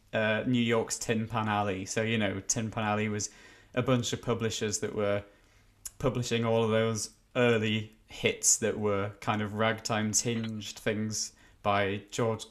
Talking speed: 165 wpm